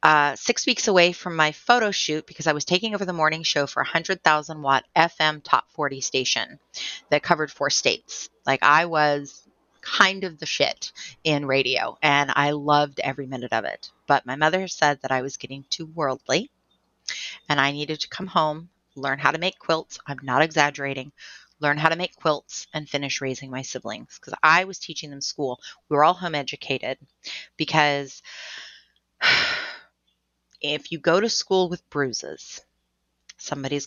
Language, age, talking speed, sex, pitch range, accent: English, 30-49, 175 wpm, female, 130-155 Hz, American